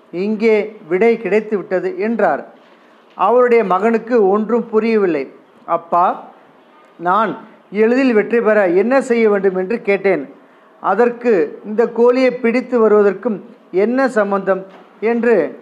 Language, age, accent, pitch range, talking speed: Tamil, 40-59, native, 190-235 Hz, 105 wpm